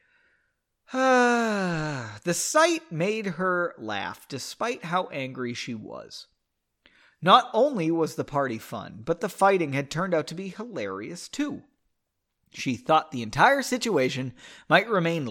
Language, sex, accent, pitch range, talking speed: English, male, American, 140-210 Hz, 130 wpm